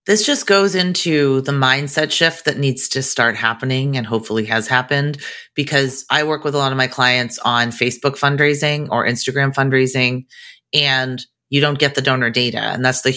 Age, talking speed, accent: 30-49, 185 wpm, American